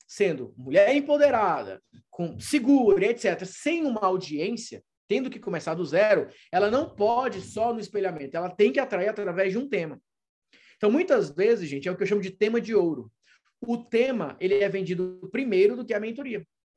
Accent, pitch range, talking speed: Brazilian, 185-240 Hz, 185 wpm